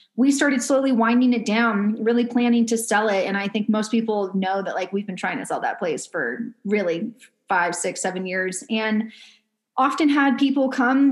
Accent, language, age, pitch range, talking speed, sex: American, English, 20-39, 205-250 Hz, 200 wpm, female